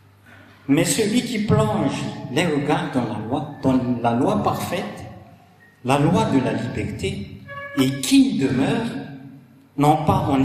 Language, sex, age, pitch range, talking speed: French, male, 60-79, 120-170 Hz, 140 wpm